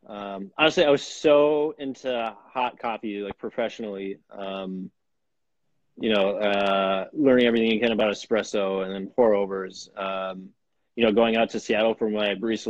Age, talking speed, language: 20-39, 160 wpm, English